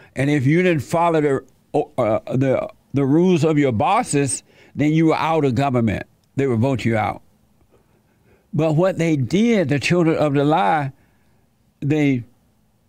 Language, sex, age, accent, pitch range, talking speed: English, male, 60-79, American, 125-165 Hz, 160 wpm